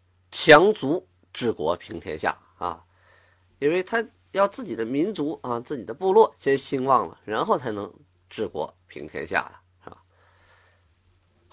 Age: 20-39